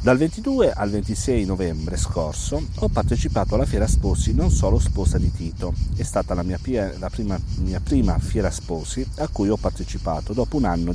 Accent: native